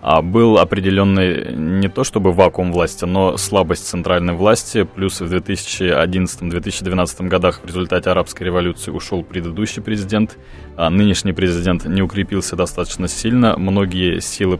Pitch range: 85-100 Hz